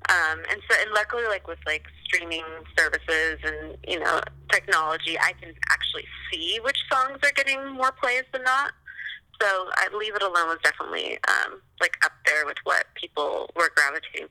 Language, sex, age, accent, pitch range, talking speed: English, female, 30-49, American, 160-230 Hz, 175 wpm